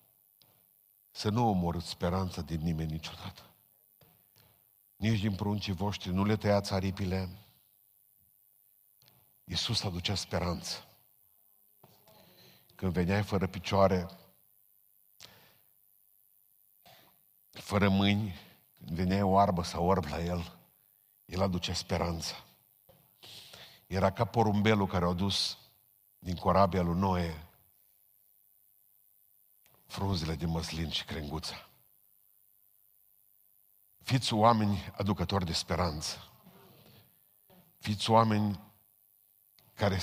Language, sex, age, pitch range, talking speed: Romanian, male, 50-69, 90-105 Hz, 85 wpm